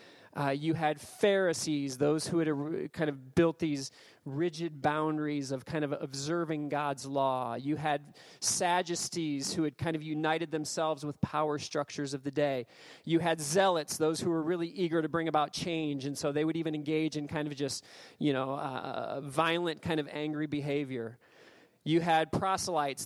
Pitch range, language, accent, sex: 150-185 Hz, English, American, male